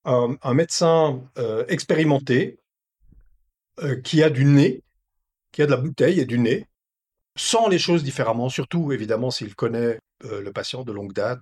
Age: 50-69